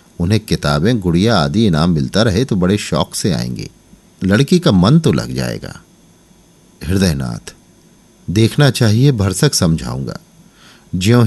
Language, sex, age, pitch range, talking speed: Hindi, male, 50-69, 80-100 Hz, 130 wpm